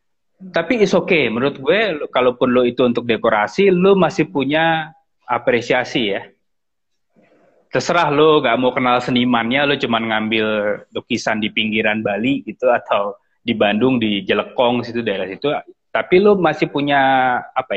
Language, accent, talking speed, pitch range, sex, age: Indonesian, native, 145 wpm, 120-170 Hz, male, 20-39